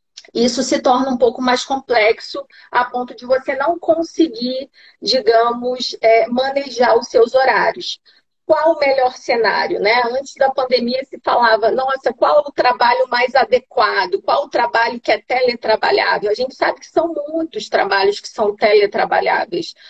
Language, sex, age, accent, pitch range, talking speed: Portuguese, female, 40-59, Brazilian, 230-295 Hz, 155 wpm